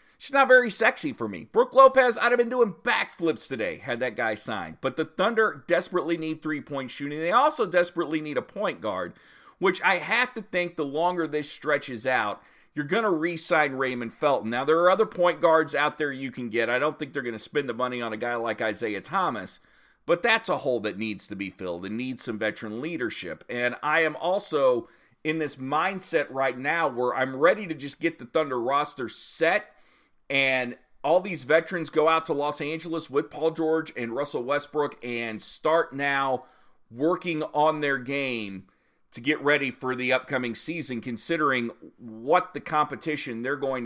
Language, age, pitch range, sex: English, 40-59, 125-165 Hz, male